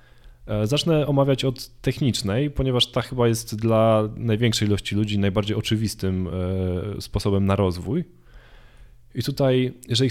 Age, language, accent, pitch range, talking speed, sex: 20-39, Polish, native, 100-120 Hz, 120 wpm, male